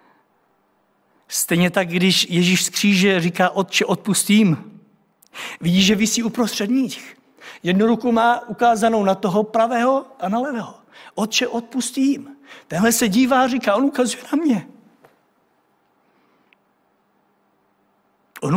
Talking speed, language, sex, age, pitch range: 115 wpm, Czech, male, 60-79, 200-270 Hz